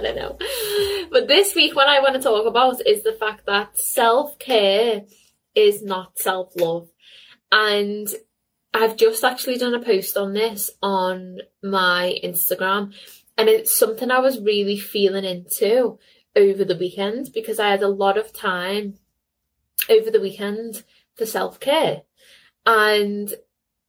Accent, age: British, 10-29